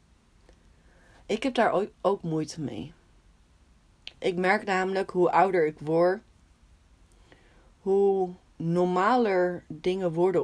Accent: Dutch